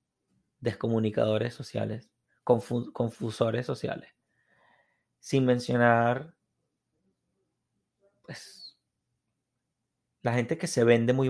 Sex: male